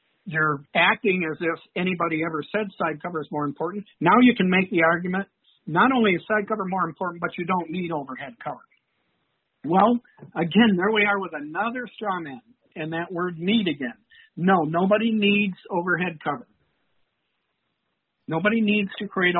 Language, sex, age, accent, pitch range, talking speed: English, male, 60-79, American, 155-195 Hz, 165 wpm